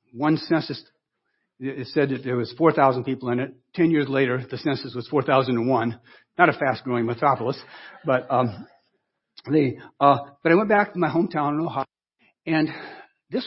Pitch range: 130-165 Hz